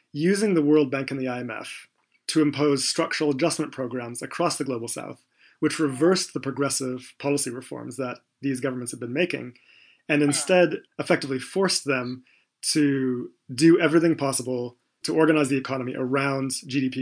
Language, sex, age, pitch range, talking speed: English, male, 30-49, 130-155 Hz, 150 wpm